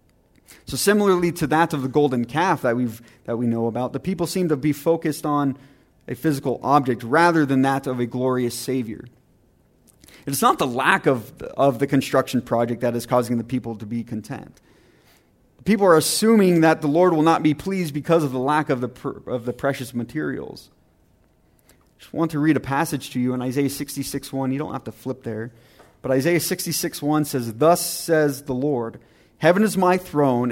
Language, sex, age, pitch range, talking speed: English, male, 30-49, 125-155 Hz, 200 wpm